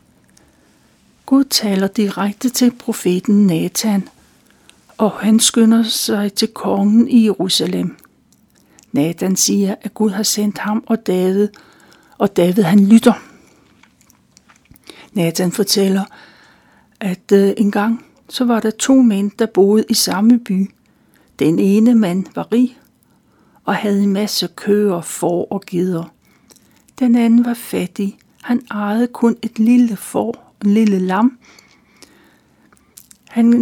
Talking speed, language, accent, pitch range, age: 120 wpm, Danish, native, 195-230 Hz, 60-79